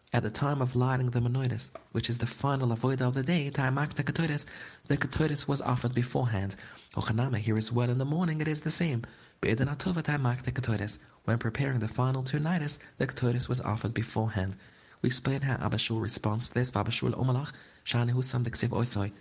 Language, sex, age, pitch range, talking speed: English, male, 30-49, 115-140 Hz, 160 wpm